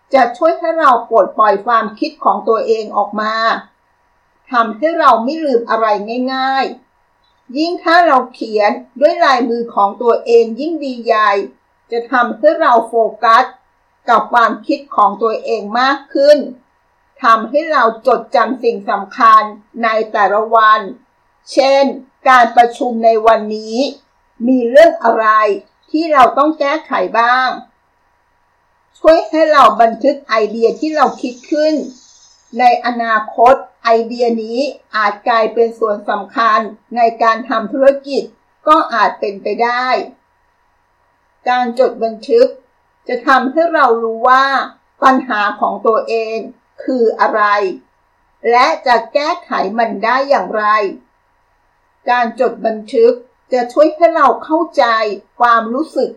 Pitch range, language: 225-285 Hz, Thai